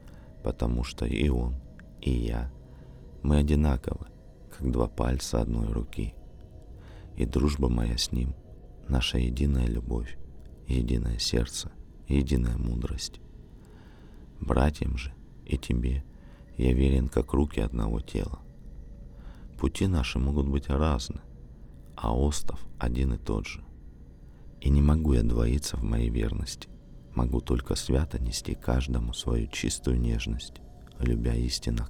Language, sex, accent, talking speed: Russian, male, native, 120 wpm